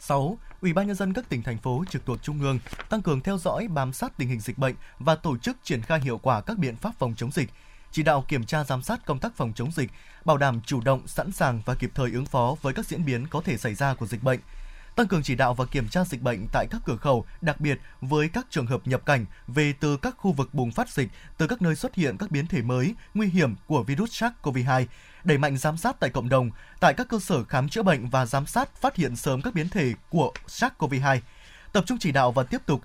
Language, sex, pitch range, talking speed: Vietnamese, male, 130-185 Hz, 265 wpm